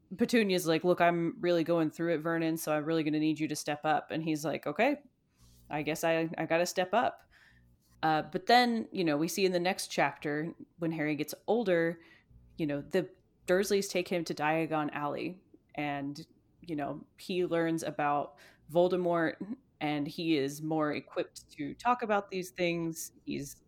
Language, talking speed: English, 185 wpm